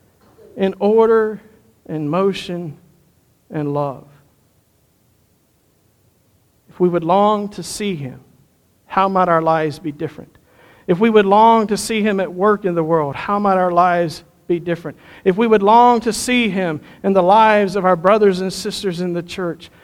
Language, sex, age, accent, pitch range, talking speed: English, male, 50-69, American, 150-190 Hz, 165 wpm